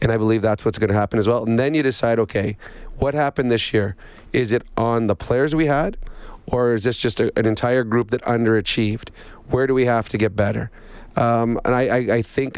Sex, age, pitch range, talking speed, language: male, 30-49, 110-125 Hz, 235 wpm, English